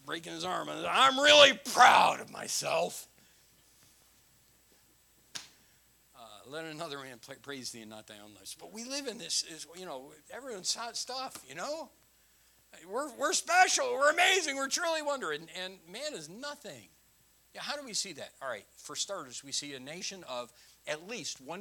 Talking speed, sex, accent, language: 175 wpm, male, American, English